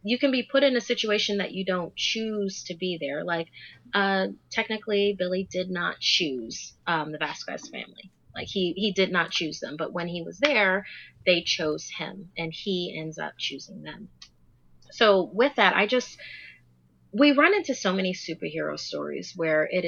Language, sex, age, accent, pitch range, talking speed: English, female, 30-49, American, 160-215 Hz, 180 wpm